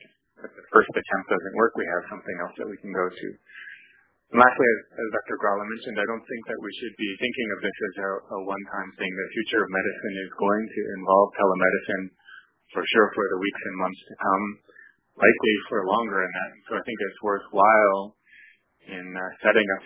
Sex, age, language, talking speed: male, 30-49, English, 210 wpm